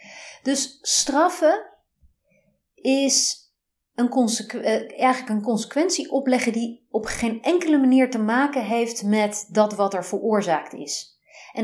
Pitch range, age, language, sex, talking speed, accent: 185-245 Hz, 30-49, Dutch, female, 115 wpm, Dutch